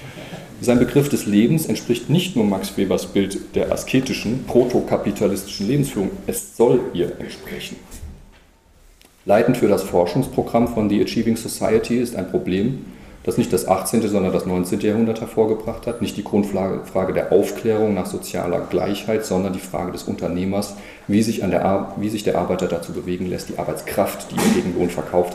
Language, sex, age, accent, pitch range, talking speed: German, male, 40-59, German, 90-115 Hz, 170 wpm